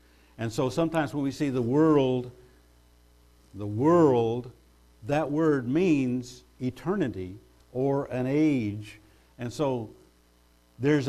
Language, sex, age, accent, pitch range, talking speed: English, male, 50-69, American, 100-140 Hz, 110 wpm